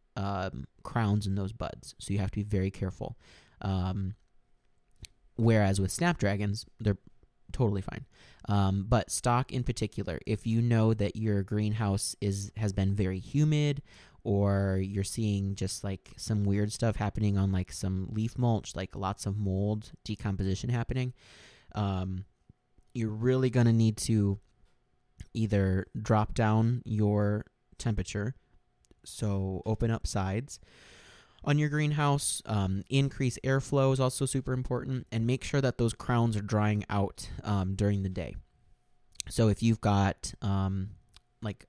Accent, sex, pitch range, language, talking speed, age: American, male, 95-115 Hz, English, 140 wpm, 20-39